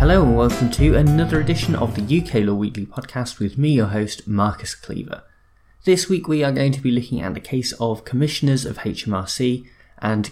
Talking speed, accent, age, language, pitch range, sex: 200 wpm, British, 20-39, English, 100-135 Hz, male